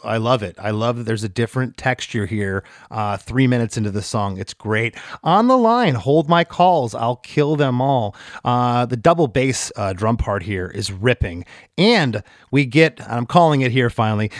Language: English